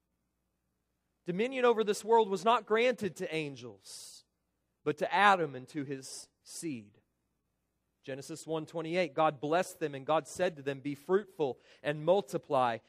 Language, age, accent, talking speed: English, 40-59, American, 140 wpm